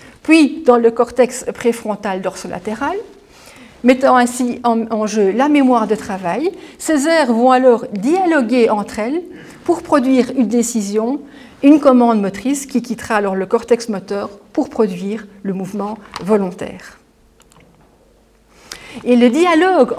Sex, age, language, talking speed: female, 50-69, French, 125 wpm